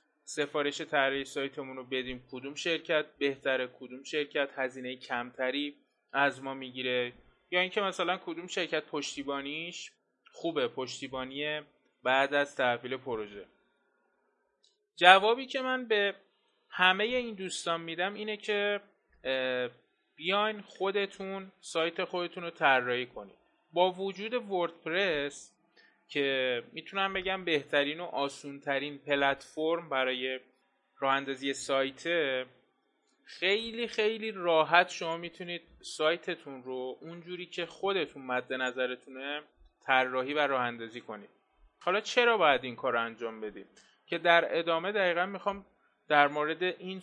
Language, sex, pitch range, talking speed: Persian, male, 130-185 Hz, 115 wpm